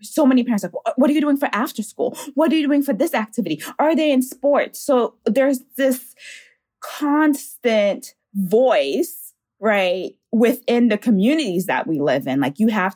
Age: 20-39